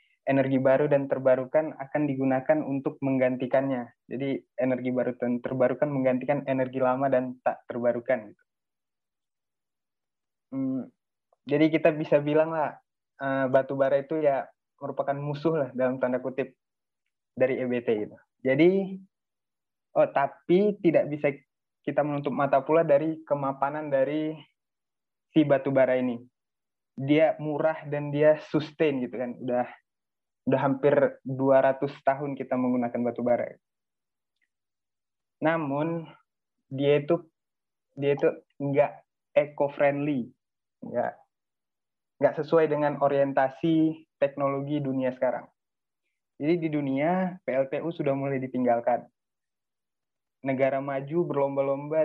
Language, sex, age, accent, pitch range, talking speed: Indonesian, male, 20-39, native, 130-150 Hz, 110 wpm